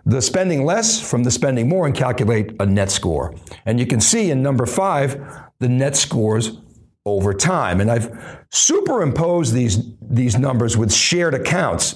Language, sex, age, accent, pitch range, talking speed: English, male, 60-79, American, 110-165 Hz, 165 wpm